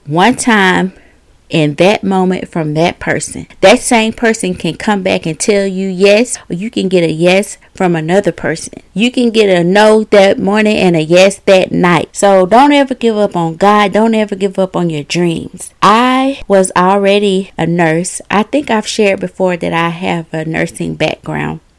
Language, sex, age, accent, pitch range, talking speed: English, female, 30-49, American, 175-210 Hz, 190 wpm